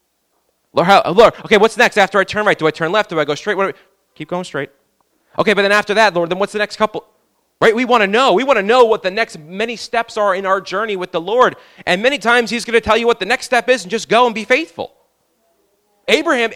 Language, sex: English, male